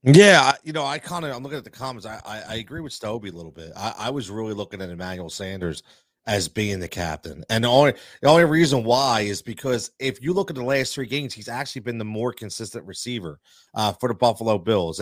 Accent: American